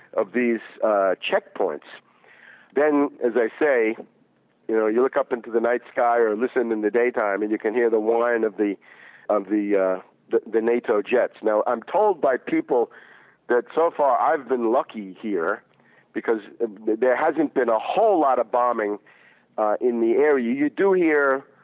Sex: male